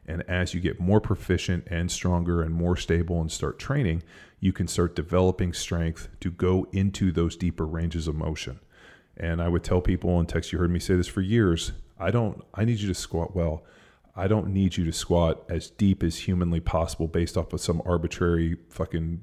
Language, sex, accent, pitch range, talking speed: English, male, American, 85-95 Hz, 205 wpm